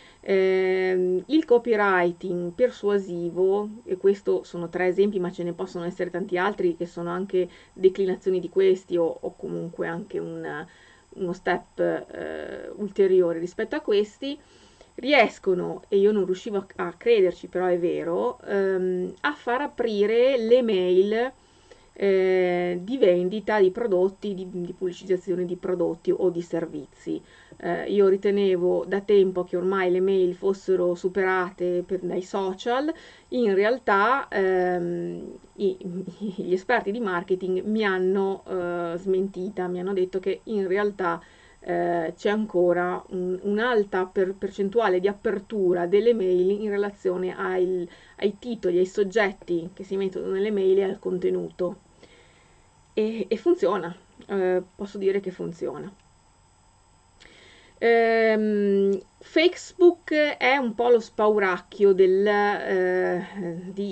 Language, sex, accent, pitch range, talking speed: Italian, female, native, 180-205 Hz, 125 wpm